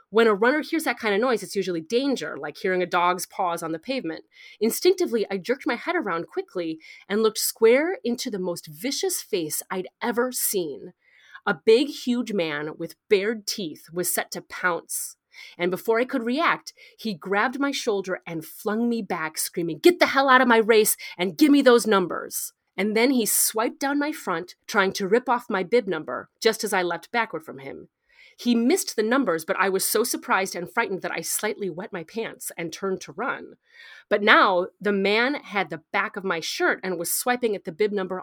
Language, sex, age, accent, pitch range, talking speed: English, female, 30-49, American, 185-265 Hz, 210 wpm